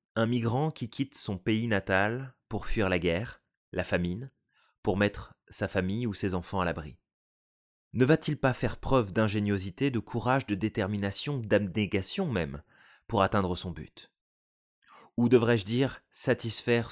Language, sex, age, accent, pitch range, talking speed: French, male, 20-39, French, 95-130 Hz, 150 wpm